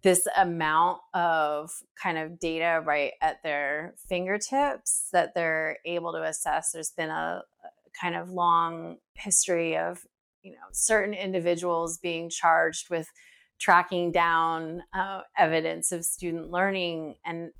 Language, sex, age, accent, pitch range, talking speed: English, female, 30-49, American, 150-175 Hz, 130 wpm